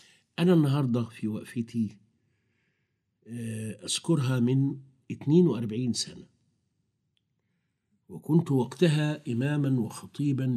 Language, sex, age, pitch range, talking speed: Arabic, male, 50-69, 110-140 Hz, 70 wpm